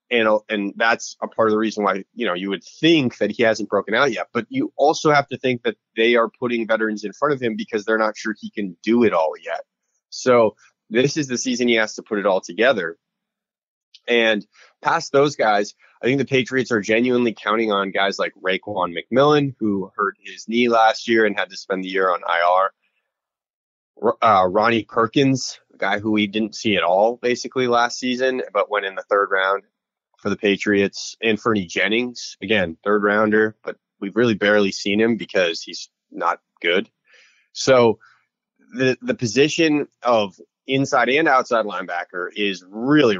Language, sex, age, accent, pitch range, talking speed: English, male, 20-39, American, 105-125 Hz, 190 wpm